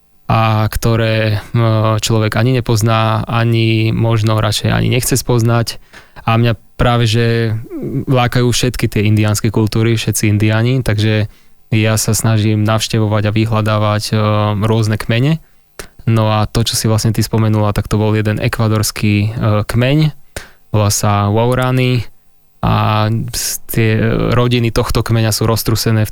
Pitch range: 110-120 Hz